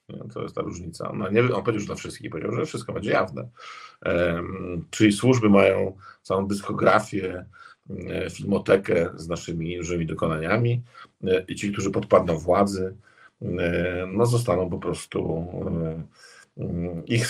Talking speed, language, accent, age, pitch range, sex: 125 wpm, Polish, native, 50-69, 90-120 Hz, male